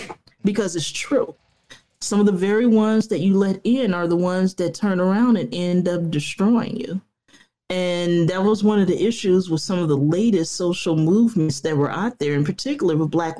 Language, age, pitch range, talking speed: English, 30-49, 160-200 Hz, 200 wpm